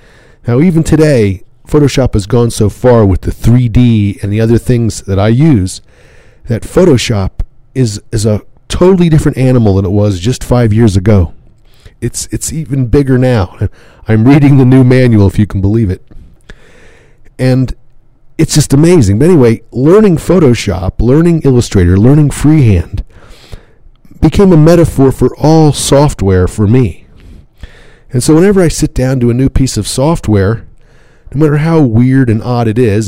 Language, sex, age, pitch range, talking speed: English, male, 40-59, 105-135 Hz, 160 wpm